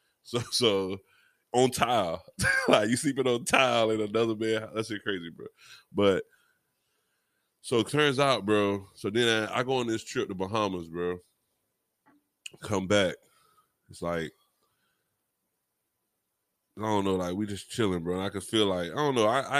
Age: 20-39